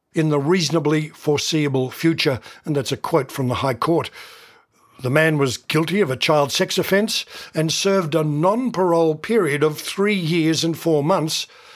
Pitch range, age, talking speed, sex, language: 150-185 Hz, 60-79, 170 wpm, male, English